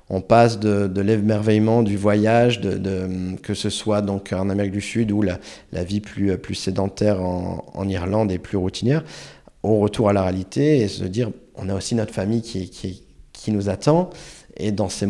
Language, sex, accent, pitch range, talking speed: French, male, French, 95-115 Hz, 205 wpm